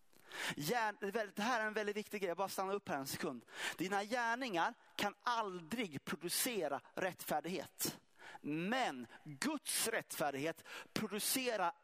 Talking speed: 120 wpm